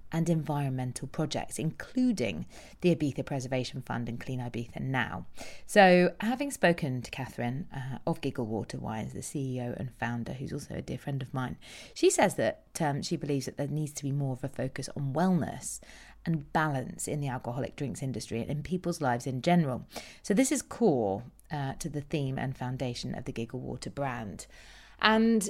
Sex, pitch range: female, 130-165 Hz